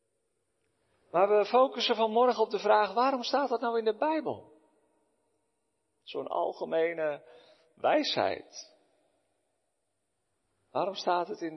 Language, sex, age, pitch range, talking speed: Dutch, male, 50-69, 110-180 Hz, 110 wpm